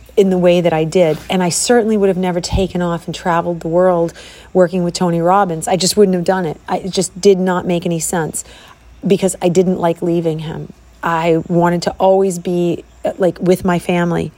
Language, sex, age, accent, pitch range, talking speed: English, female, 40-59, American, 175-195 Hz, 210 wpm